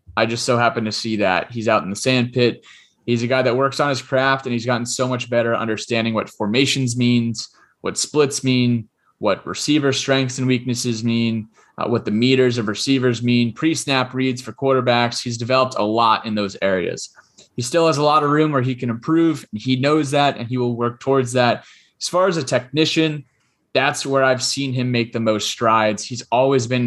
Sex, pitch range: male, 105-130 Hz